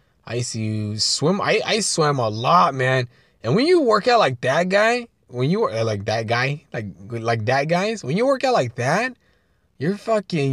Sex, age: male, 20-39